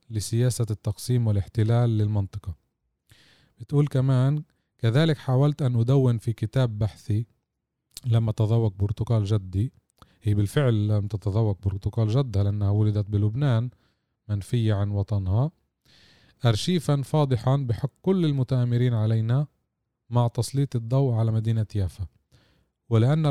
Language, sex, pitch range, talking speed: Arabic, male, 105-125 Hz, 110 wpm